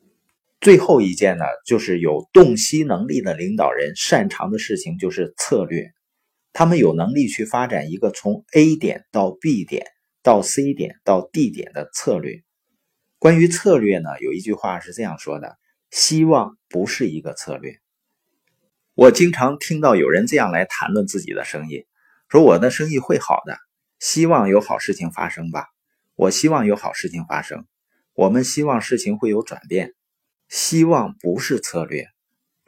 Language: Chinese